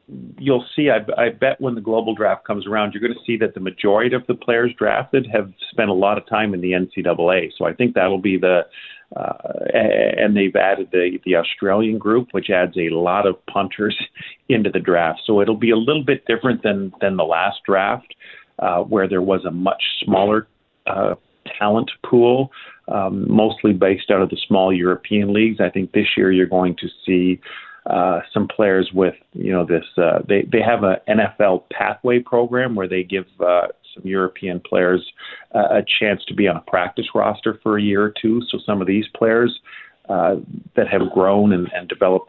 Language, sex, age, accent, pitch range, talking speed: English, male, 50-69, American, 90-110 Hz, 200 wpm